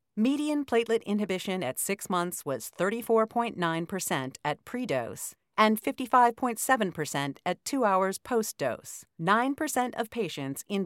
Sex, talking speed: female, 110 wpm